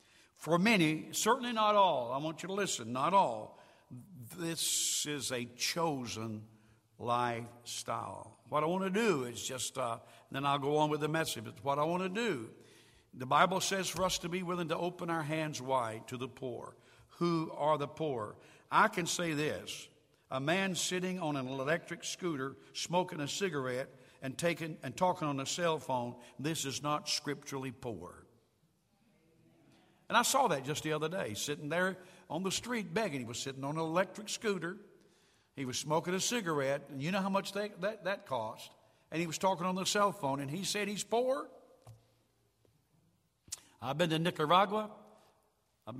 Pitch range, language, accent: 130-180 Hz, English, American